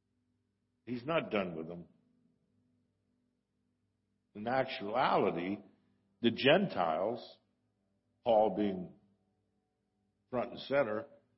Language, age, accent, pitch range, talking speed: English, 60-79, American, 90-125 Hz, 75 wpm